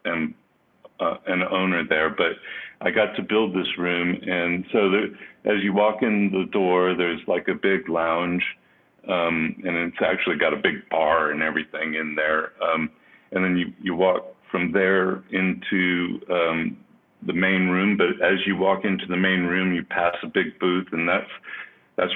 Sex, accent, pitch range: male, American, 85-95 Hz